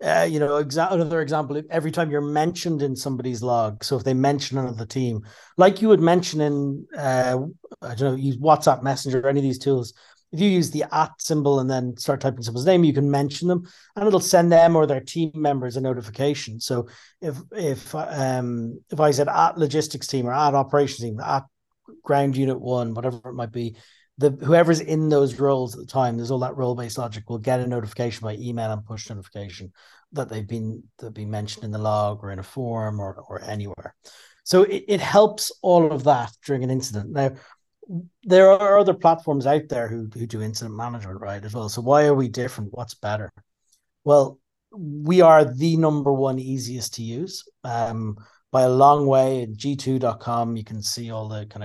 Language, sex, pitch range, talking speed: English, male, 115-150 Hz, 205 wpm